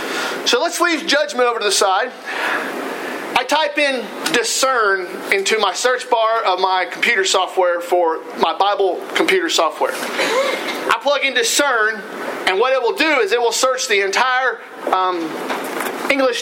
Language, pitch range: English, 200-295 Hz